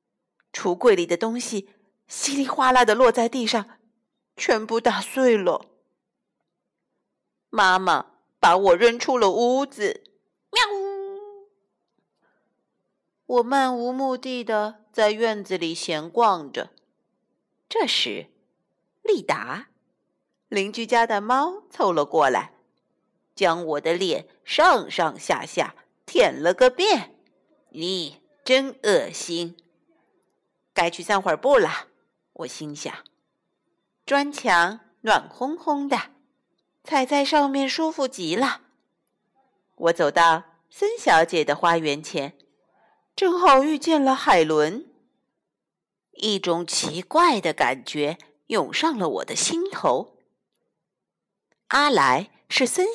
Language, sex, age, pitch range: Chinese, female, 50-69, 170-280 Hz